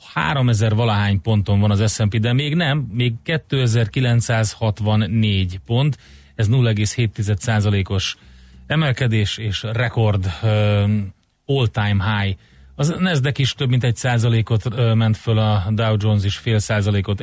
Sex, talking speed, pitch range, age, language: male, 125 wpm, 100-115 Hz, 30-49, Hungarian